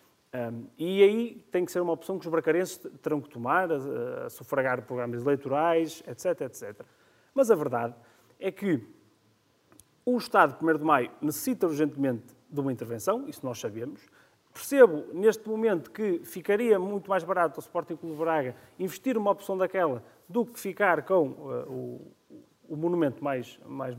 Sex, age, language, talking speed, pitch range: male, 30-49, Portuguese, 165 wpm, 135-185 Hz